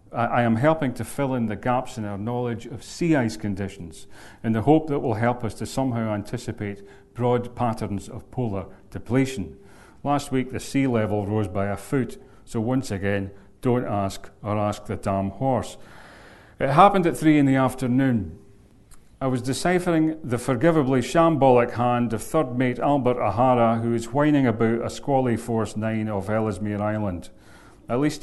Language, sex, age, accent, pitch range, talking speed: English, male, 40-59, British, 105-130 Hz, 175 wpm